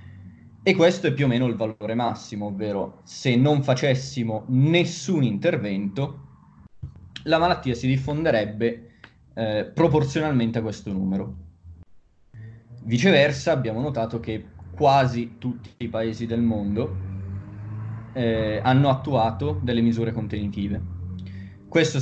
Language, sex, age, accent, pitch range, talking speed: Italian, male, 20-39, native, 110-130 Hz, 110 wpm